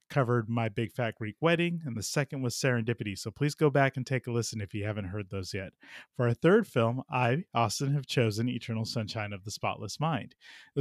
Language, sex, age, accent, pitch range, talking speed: English, male, 30-49, American, 110-140 Hz, 220 wpm